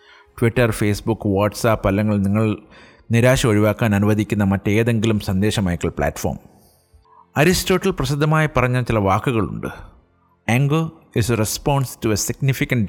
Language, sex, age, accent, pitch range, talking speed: English, male, 50-69, Indian, 100-130 Hz, 100 wpm